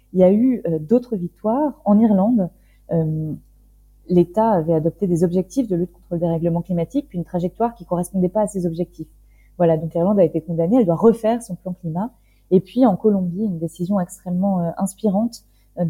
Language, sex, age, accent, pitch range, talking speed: French, female, 20-39, French, 170-205 Hz, 195 wpm